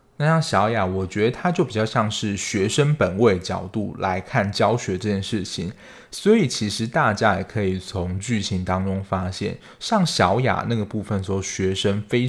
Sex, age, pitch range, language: male, 20-39, 95-120 Hz, Chinese